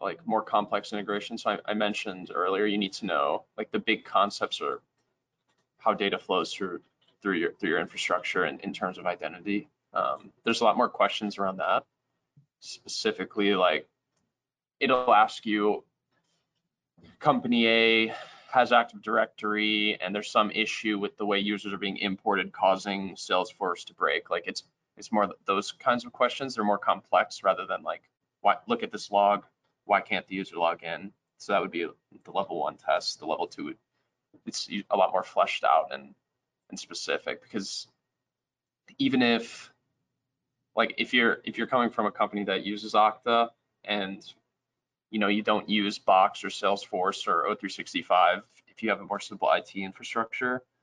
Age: 20-39